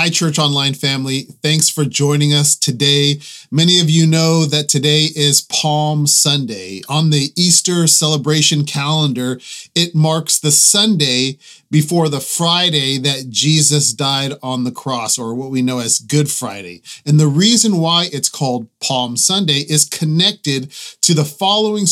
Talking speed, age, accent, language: 150 wpm, 30-49, American, English